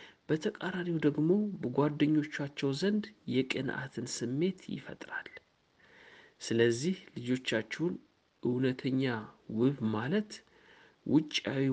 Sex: male